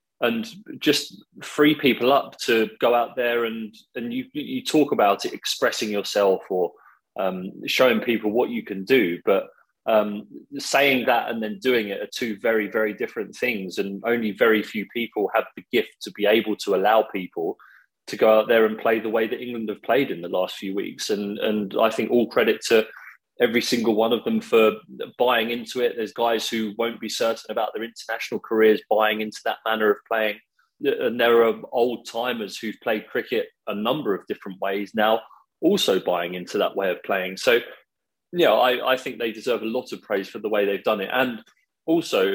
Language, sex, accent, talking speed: English, male, British, 205 wpm